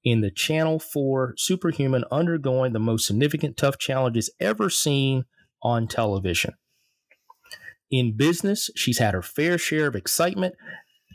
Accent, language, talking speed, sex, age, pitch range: American, English, 130 wpm, male, 30-49, 110-155 Hz